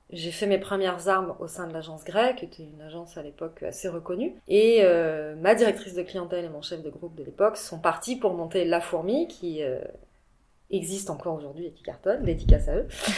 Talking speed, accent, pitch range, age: 220 wpm, French, 175-225 Hz, 20-39